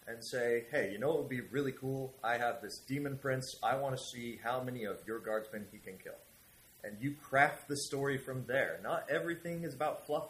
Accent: American